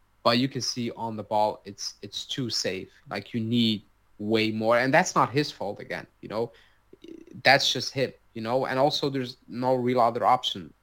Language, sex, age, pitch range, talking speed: Swedish, male, 20-39, 105-125 Hz, 200 wpm